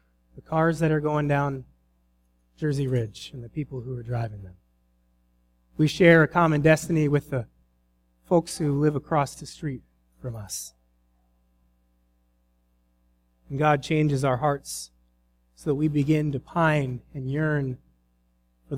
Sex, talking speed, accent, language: male, 140 wpm, American, English